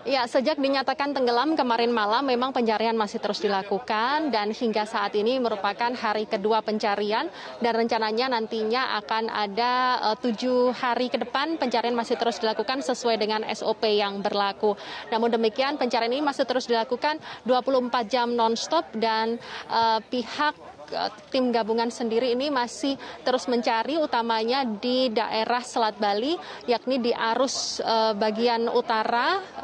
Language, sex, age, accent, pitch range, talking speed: Indonesian, female, 20-39, native, 225-255 Hz, 140 wpm